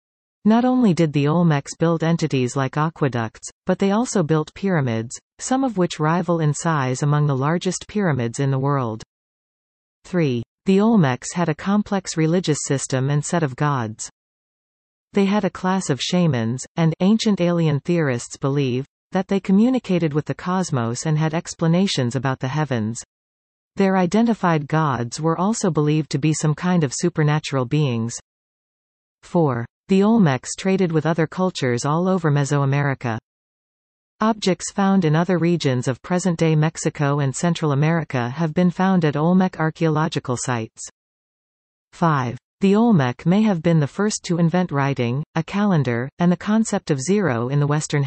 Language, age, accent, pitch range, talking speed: English, 40-59, American, 140-185 Hz, 155 wpm